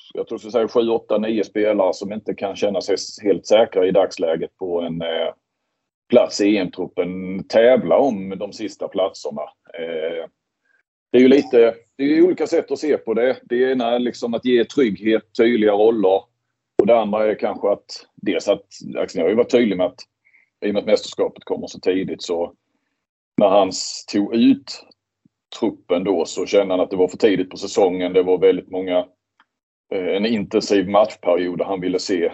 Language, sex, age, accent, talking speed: Swedish, male, 30-49, native, 190 wpm